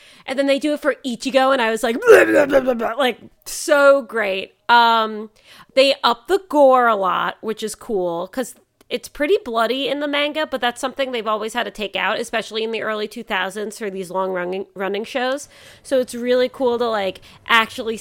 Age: 30-49